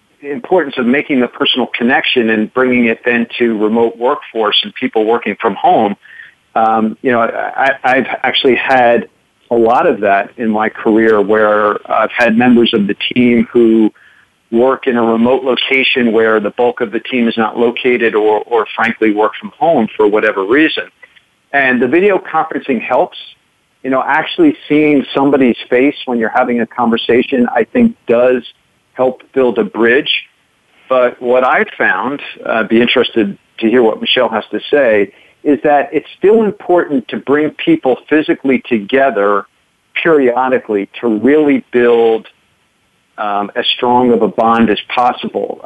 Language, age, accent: English, 50-69, American